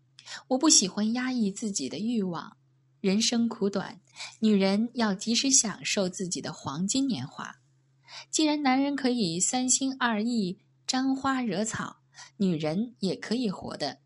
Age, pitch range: 10-29, 155-255 Hz